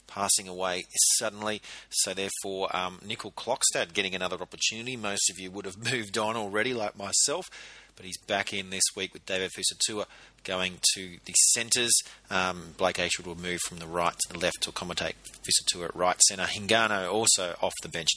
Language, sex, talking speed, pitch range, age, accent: English, male, 185 wpm, 90-105 Hz, 30-49, Australian